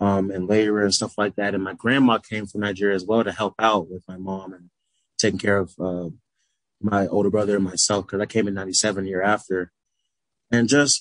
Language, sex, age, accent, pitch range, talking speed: English, male, 20-39, American, 95-110 Hz, 225 wpm